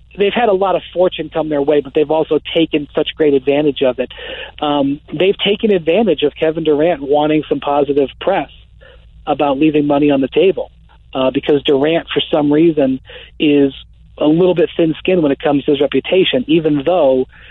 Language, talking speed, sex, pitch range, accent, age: English, 185 wpm, male, 140-160 Hz, American, 40-59